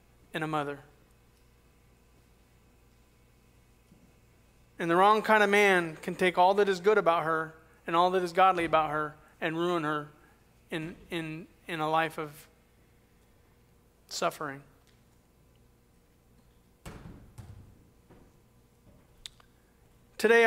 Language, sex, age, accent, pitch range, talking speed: English, male, 40-59, American, 140-200 Hz, 105 wpm